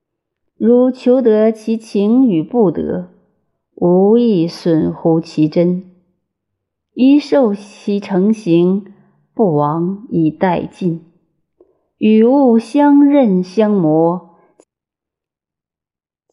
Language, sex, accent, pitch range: Chinese, female, native, 180-230 Hz